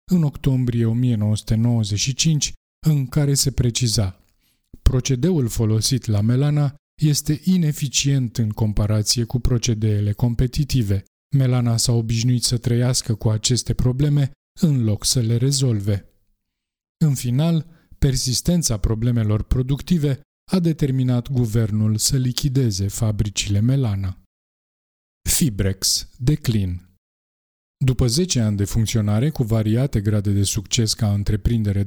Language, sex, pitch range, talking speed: Romanian, male, 110-140 Hz, 105 wpm